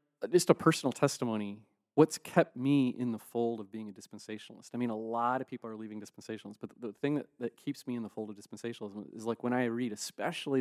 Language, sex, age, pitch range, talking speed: English, male, 30-49, 110-135 Hz, 240 wpm